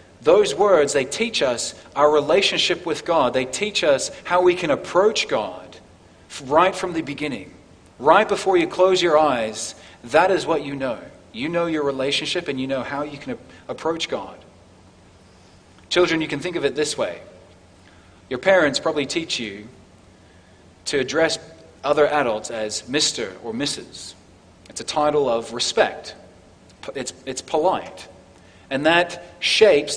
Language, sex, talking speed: English, male, 155 wpm